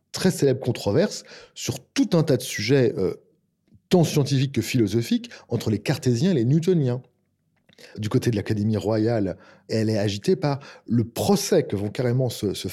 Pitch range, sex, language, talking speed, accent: 115-165 Hz, male, French, 170 wpm, French